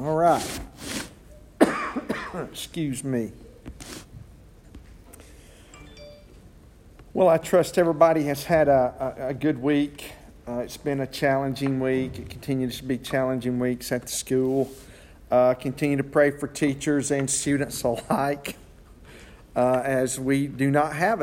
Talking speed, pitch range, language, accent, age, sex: 125 wpm, 125-160 Hz, English, American, 50-69, male